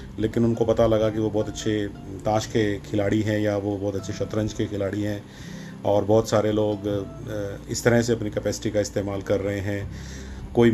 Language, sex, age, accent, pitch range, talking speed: Hindi, male, 40-59, native, 105-125 Hz, 195 wpm